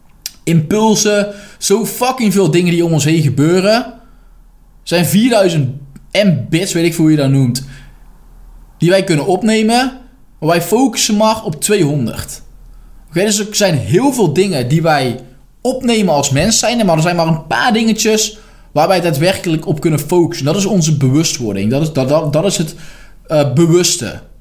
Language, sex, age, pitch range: Dutch, male, 20-39, 145-205 Hz